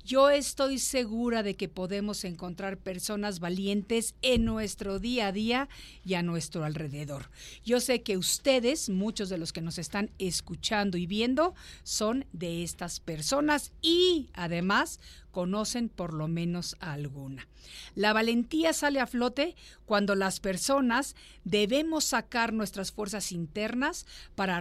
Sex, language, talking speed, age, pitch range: female, Spanish, 135 wpm, 50-69, 175-235 Hz